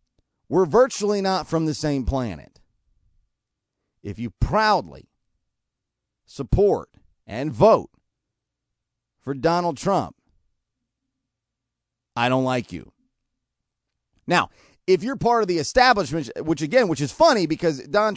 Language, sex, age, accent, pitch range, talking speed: English, male, 40-59, American, 135-205 Hz, 110 wpm